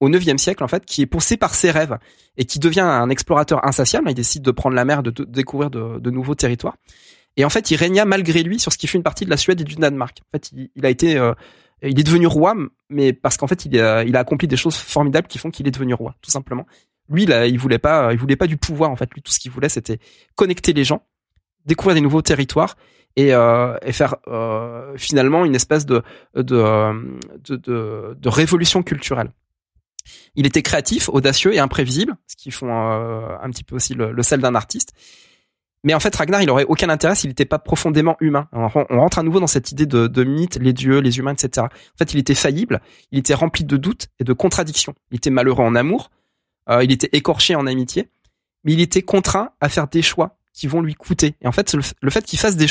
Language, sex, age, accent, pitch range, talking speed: French, male, 20-39, French, 125-160 Hz, 245 wpm